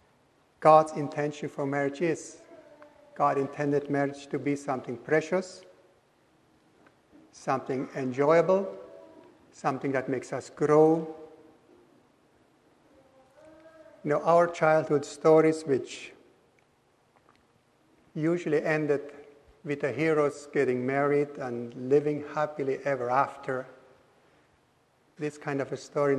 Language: English